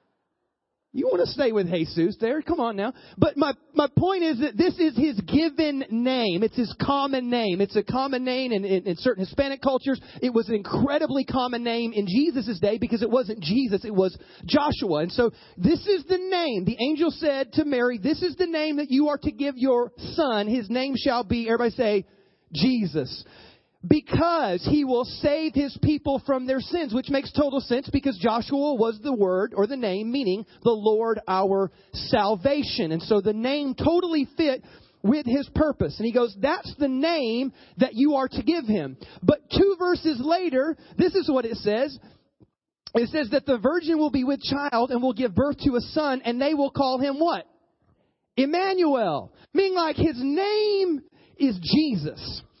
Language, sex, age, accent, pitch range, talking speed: English, male, 30-49, American, 230-295 Hz, 190 wpm